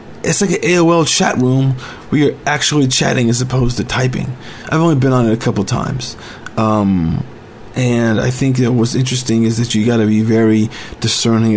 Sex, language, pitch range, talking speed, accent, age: male, English, 110-135 Hz, 185 wpm, American, 40-59